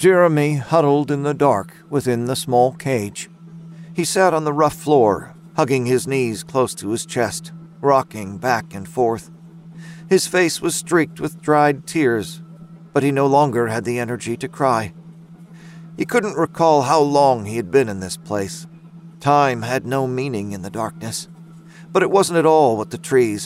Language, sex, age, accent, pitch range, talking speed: English, male, 50-69, American, 130-165 Hz, 175 wpm